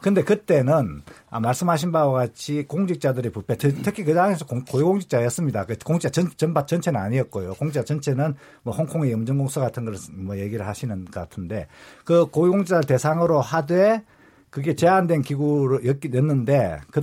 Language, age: Korean, 50-69